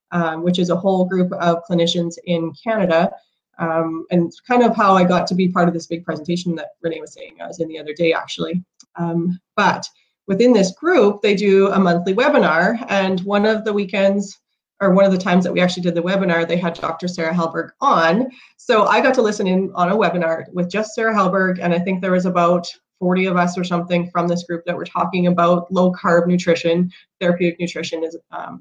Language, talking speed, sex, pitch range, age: English, 220 wpm, female, 175-200 Hz, 30-49